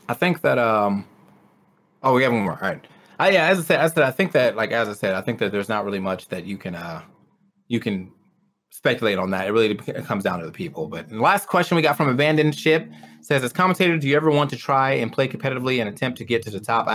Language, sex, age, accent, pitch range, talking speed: English, male, 20-39, American, 110-150 Hz, 280 wpm